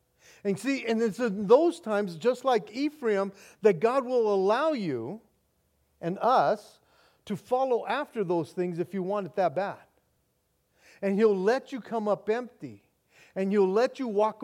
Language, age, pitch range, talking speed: English, 40-59, 195-255 Hz, 165 wpm